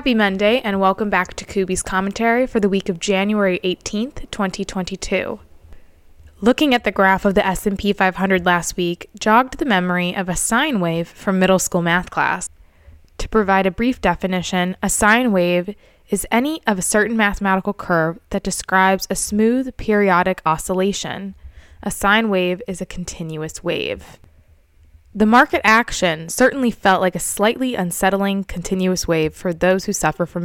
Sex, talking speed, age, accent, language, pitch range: female, 160 wpm, 20-39, American, English, 170-205 Hz